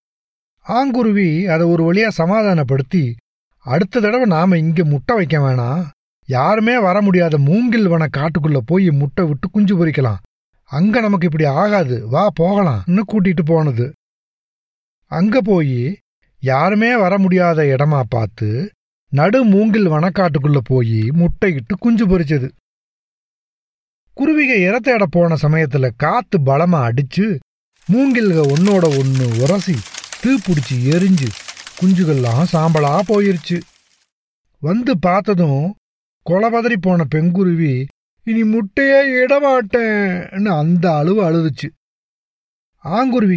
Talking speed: 100 wpm